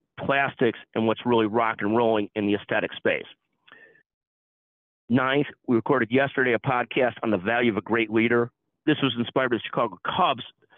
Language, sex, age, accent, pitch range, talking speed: English, male, 50-69, American, 110-135 Hz, 175 wpm